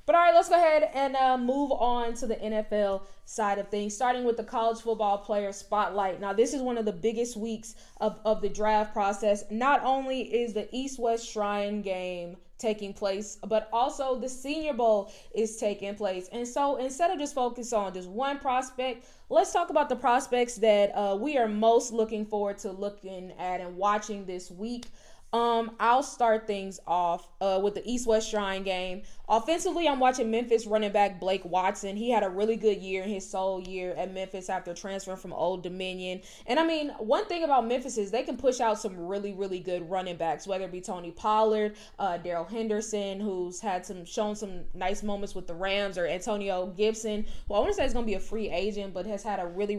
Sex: female